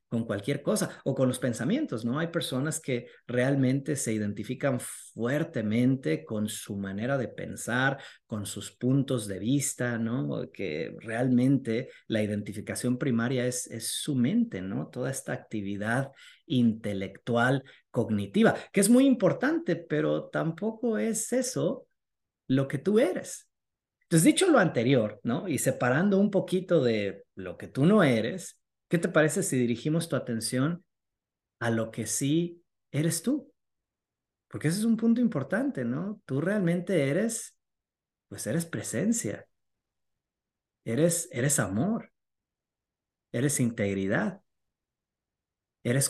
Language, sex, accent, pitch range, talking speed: Spanish, male, Mexican, 115-170 Hz, 130 wpm